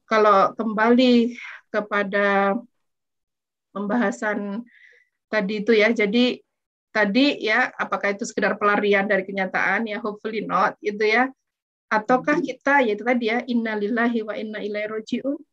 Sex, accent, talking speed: female, native, 125 wpm